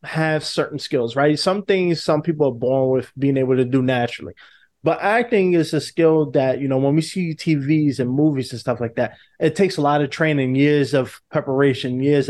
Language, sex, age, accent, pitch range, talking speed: English, male, 20-39, American, 130-160 Hz, 215 wpm